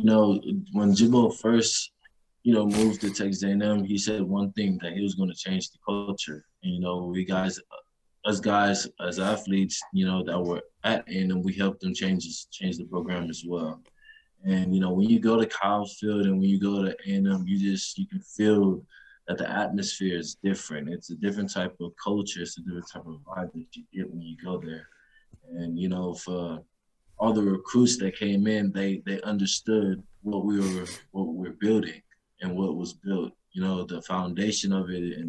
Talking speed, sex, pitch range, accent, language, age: 205 wpm, male, 90-105 Hz, American, English, 20-39